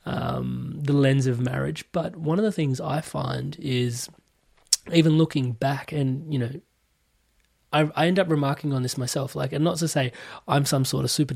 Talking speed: 195 wpm